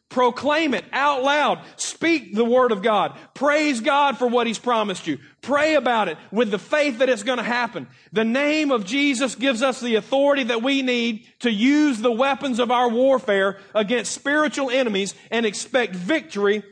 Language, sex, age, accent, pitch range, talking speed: English, male, 40-59, American, 155-220 Hz, 185 wpm